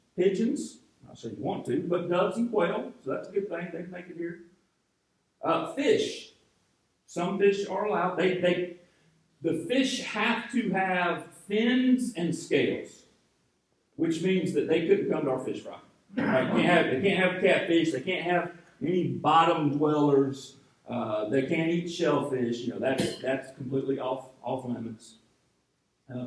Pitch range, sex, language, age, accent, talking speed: 145-220 Hz, male, English, 40-59, American, 170 wpm